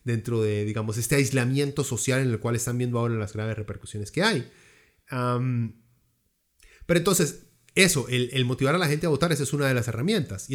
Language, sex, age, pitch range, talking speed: Spanish, male, 30-49, 115-140 Hz, 205 wpm